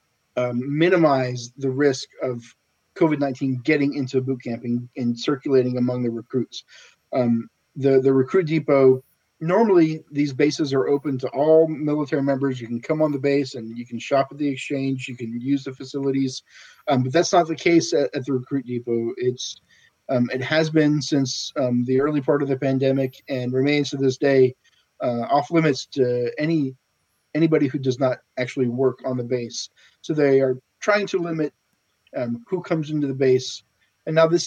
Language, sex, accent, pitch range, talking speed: English, male, American, 125-150 Hz, 185 wpm